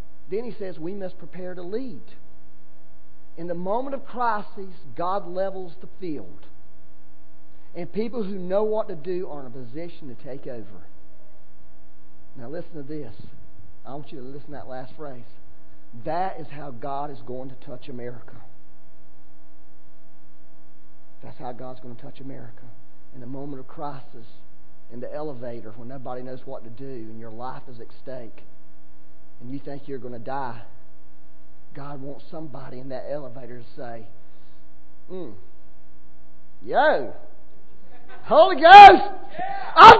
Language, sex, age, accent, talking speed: English, male, 40-59, American, 150 wpm